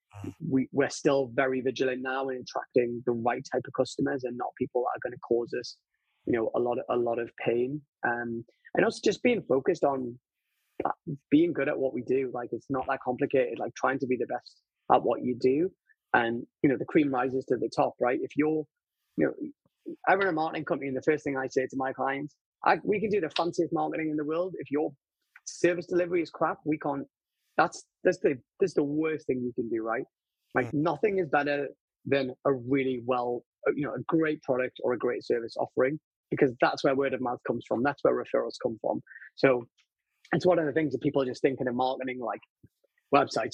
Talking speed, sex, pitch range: 225 wpm, male, 125-155 Hz